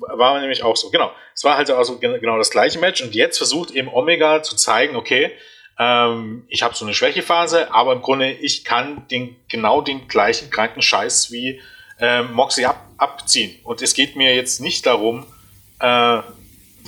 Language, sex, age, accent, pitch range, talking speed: German, male, 30-49, German, 110-145 Hz, 180 wpm